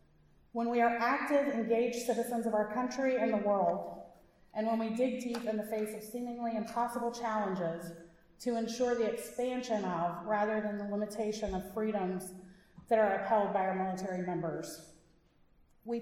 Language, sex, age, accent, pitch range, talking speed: English, female, 30-49, American, 200-235 Hz, 160 wpm